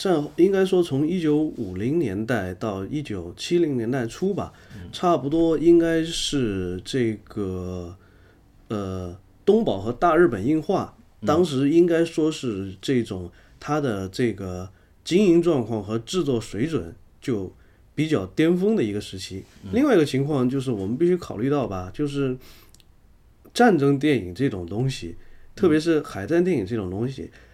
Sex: male